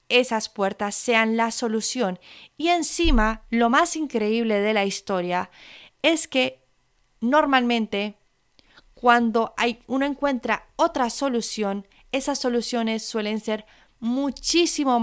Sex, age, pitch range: female, 30-49, 210-250 Hz